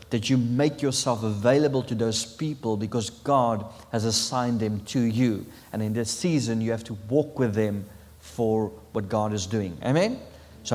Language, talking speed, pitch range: English, 180 wpm, 110-135 Hz